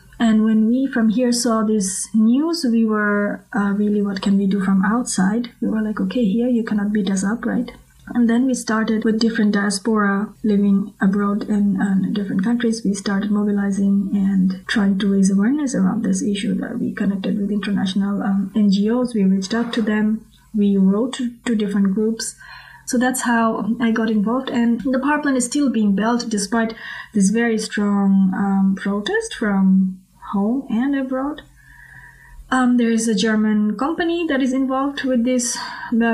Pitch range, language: 200-235 Hz, German